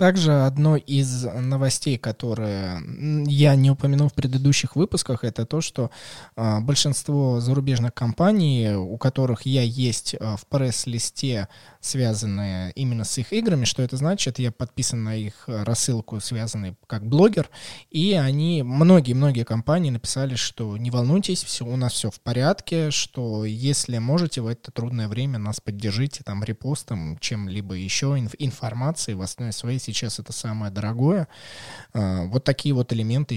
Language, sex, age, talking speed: Russian, male, 20-39, 140 wpm